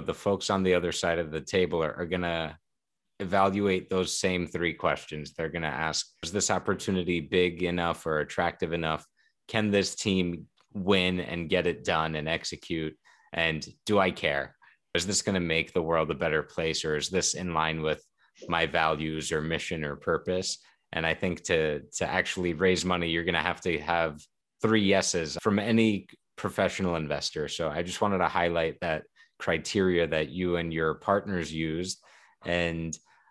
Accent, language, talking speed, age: American, English, 180 wpm, 30-49